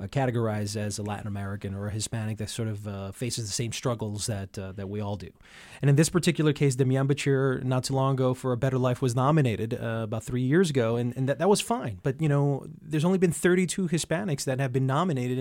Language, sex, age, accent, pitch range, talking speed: English, male, 30-49, American, 110-135 Hz, 240 wpm